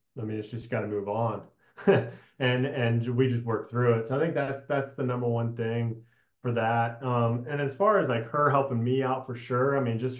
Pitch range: 115-130 Hz